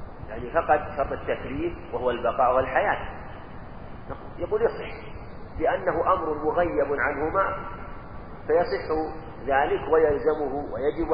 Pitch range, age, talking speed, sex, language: 105-155 Hz, 40-59, 90 wpm, male, Arabic